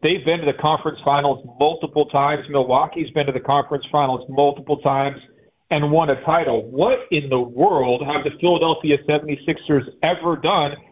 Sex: male